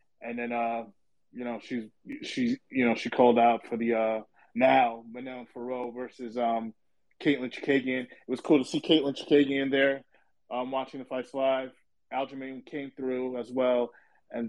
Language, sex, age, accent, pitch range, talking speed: English, male, 20-39, American, 120-145 Hz, 175 wpm